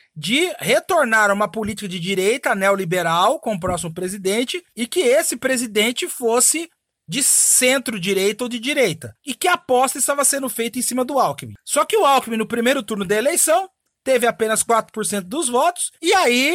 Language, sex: Portuguese, male